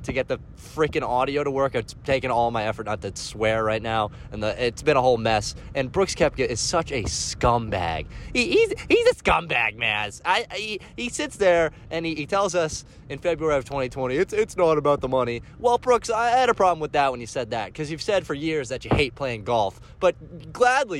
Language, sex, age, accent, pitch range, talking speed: English, male, 20-39, American, 130-215 Hz, 230 wpm